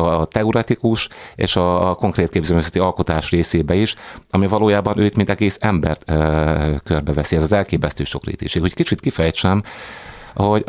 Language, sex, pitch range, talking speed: Hungarian, male, 80-100 Hz, 145 wpm